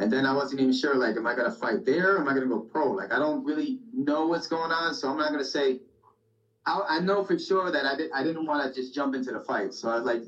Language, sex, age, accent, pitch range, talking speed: English, male, 30-49, American, 125-180 Hz, 305 wpm